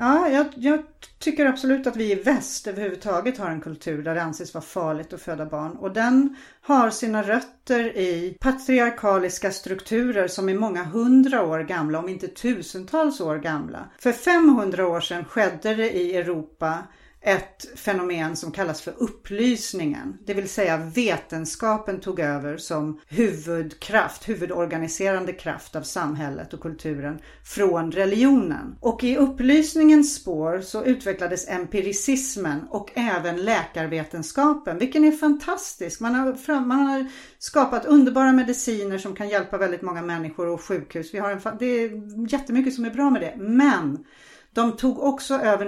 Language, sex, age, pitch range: English, female, 40-59, 180-250 Hz